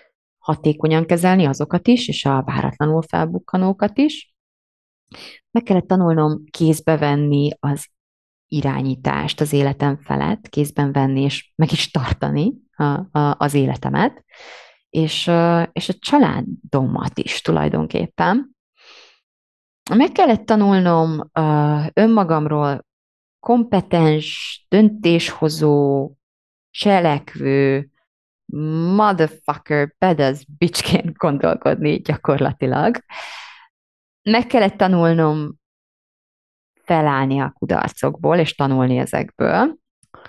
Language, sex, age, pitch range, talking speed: Hungarian, female, 30-49, 140-180 Hz, 80 wpm